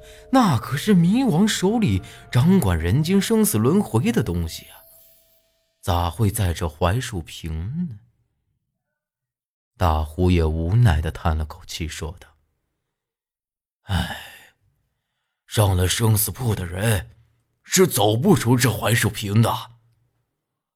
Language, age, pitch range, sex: Chinese, 30-49, 90-135 Hz, male